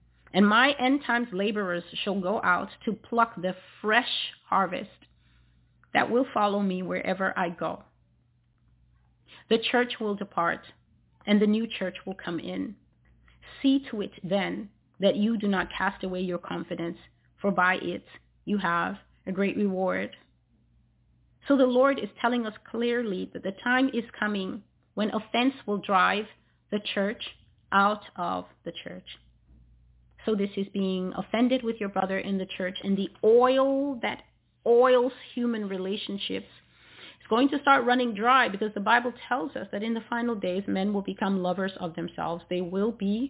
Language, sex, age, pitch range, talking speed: English, female, 30-49, 185-235 Hz, 160 wpm